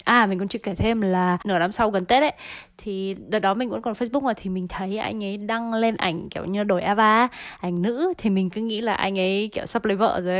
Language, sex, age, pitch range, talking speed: Vietnamese, female, 20-39, 185-225 Hz, 270 wpm